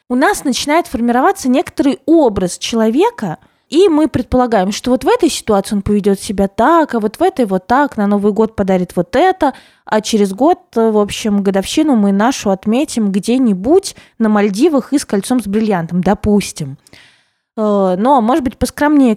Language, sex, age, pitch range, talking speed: Russian, female, 20-39, 205-285 Hz, 165 wpm